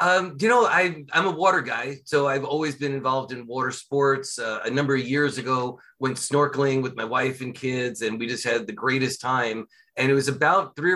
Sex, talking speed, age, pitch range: male, 225 wpm, 30-49, 130-165 Hz